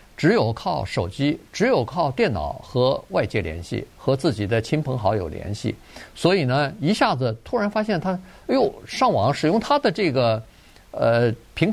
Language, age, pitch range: Chinese, 50-69, 115-185 Hz